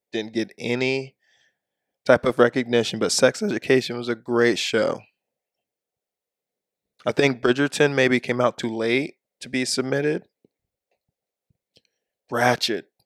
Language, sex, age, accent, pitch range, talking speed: English, male, 20-39, American, 120-140 Hz, 115 wpm